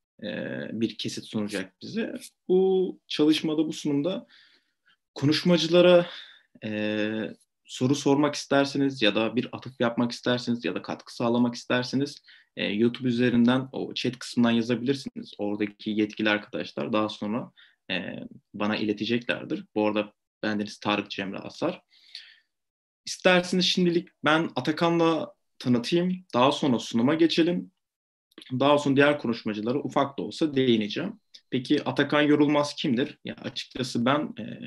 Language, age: Turkish, 30-49